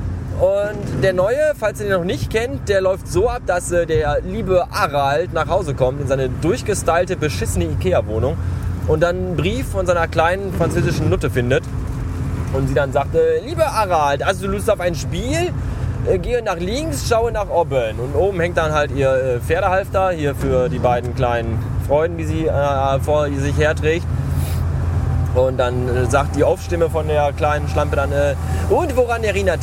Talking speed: 180 wpm